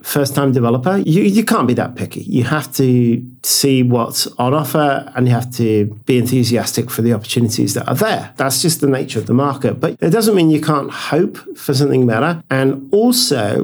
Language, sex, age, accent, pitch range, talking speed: English, male, 40-59, British, 115-145 Hz, 200 wpm